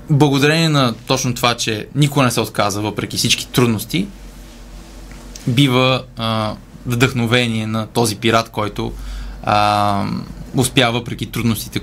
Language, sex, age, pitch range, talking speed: Bulgarian, male, 20-39, 115-140 Hz, 115 wpm